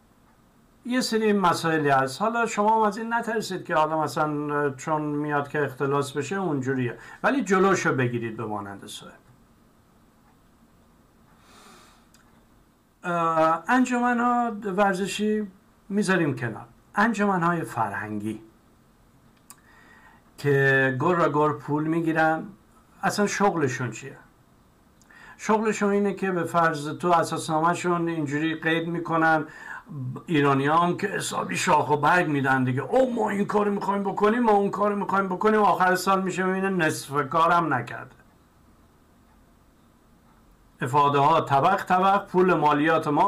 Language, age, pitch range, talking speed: Persian, 60-79, 145-200 Hz, 120 wpm